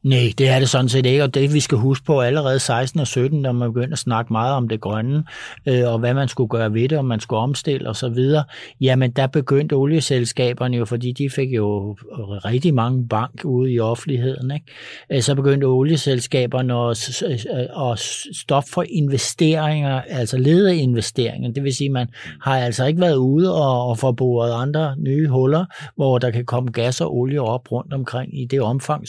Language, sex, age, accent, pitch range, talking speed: Danish, male, 60-79, native, 120-145 Hz, 185 wpm